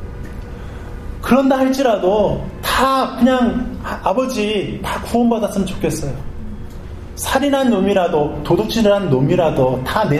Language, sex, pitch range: Korean, male, 110-160 Hz